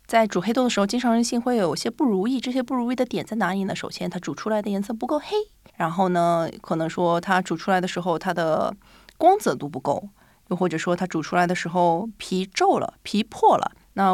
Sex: female